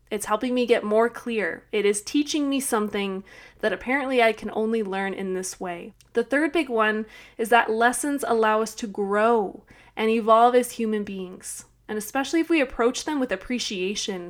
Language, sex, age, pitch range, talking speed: English, female, 20-39, 205-240 Hz, 185 wpm